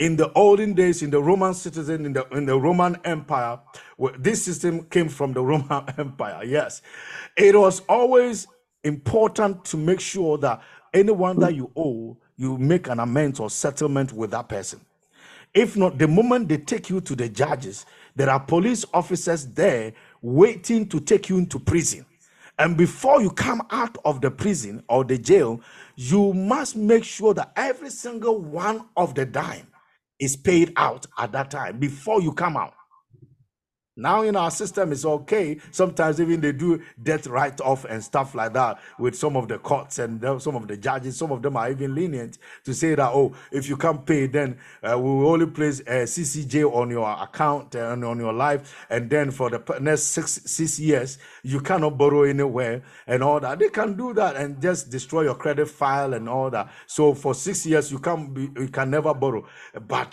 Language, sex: English, male